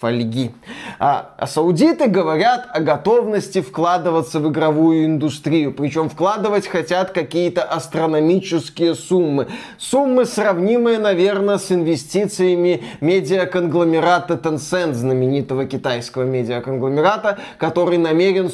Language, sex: Russian, male